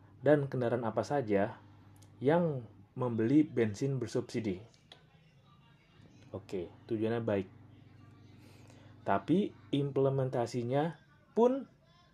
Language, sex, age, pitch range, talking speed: Indonesian, male, 30-49, 100-135 Hz, 70 wpm